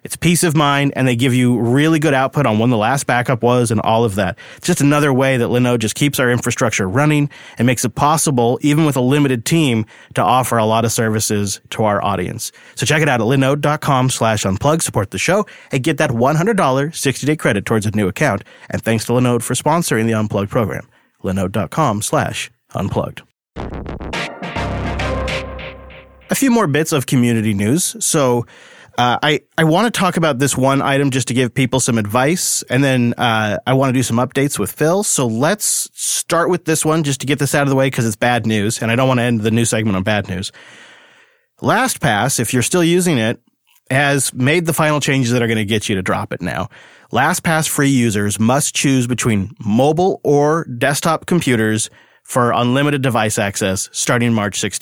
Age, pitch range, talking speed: 30-49, 110-145 Hz, 200 wpm